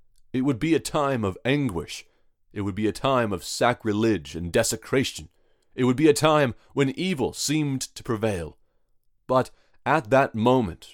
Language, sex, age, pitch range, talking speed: English, male, 30-49, 100-135 Hz, 165 wpm